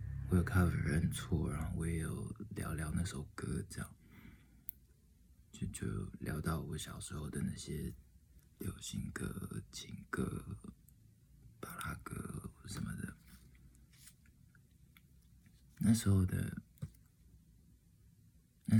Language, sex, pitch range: Chinese, male, 80-100 Hz